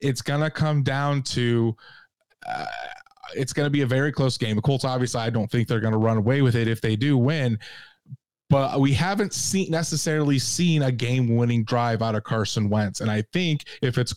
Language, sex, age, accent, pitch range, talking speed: English, male, 20-39, American, 120-145 Hz, 210 wpm